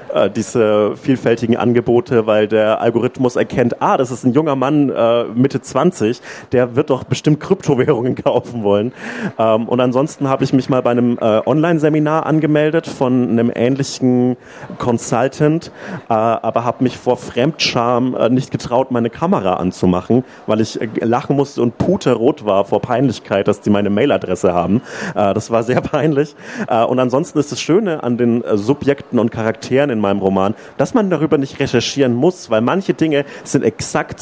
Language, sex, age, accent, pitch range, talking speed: German, male, 40-59, German, 120-150 Hz, 170 wpm